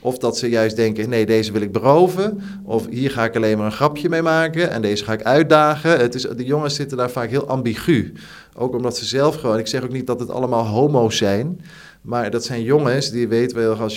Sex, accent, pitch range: male, Dutch, 110-130 Hz